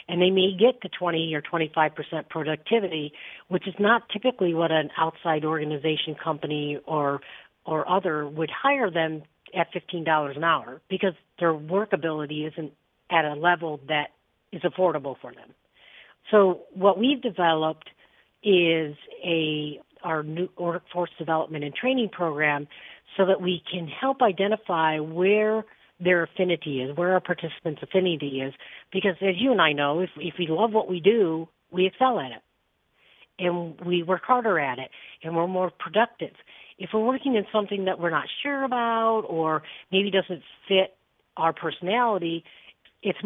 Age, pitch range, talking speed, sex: 50-69, 155-195 Hz, 155 wpm, female